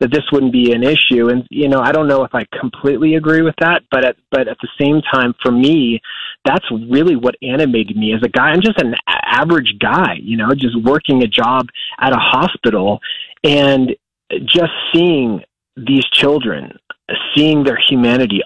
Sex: male